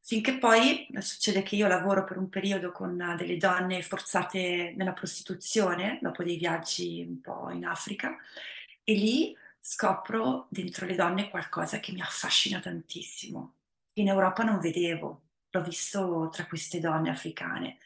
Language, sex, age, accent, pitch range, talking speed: Italian, female, 30-49, native, 170-195 Hz, 145 wpm